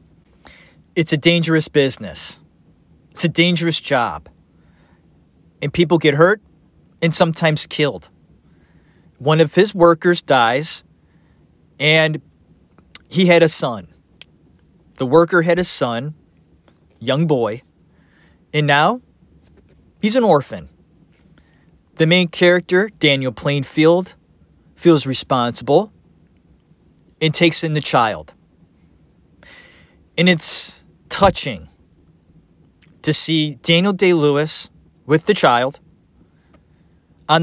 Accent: American